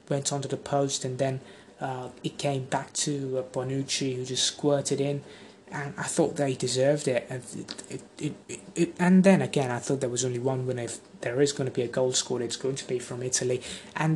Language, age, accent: English, 20-39, British